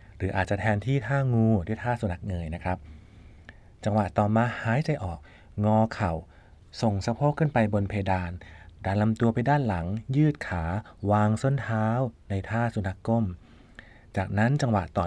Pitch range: 95-120 Hz